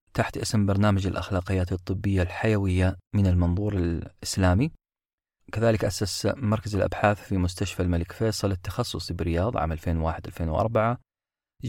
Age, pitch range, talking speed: 30-49, 90-105 Hz, 110 wpm